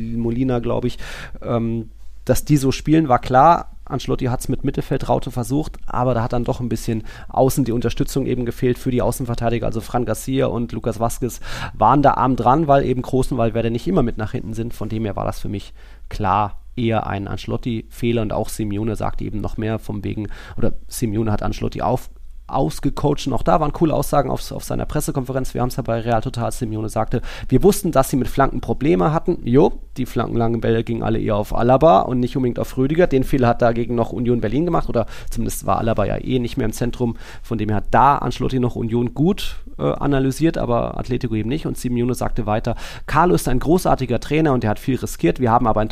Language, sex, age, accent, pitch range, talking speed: German, male, 30-49, German, 110-130 Hz, 220 wpm